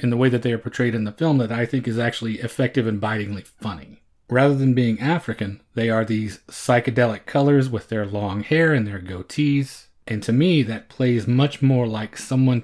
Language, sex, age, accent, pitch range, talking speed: English, male, 30-49, American, 105-125 Hz, 210 wpm